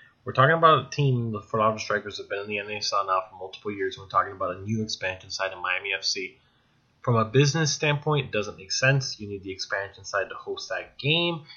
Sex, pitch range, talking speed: male, 100-135 Hz, 230 wpm